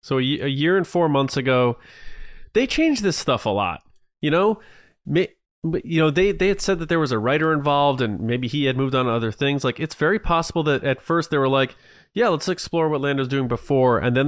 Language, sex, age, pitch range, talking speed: English, male, 20-39, 110-140 Hz, 235 wpm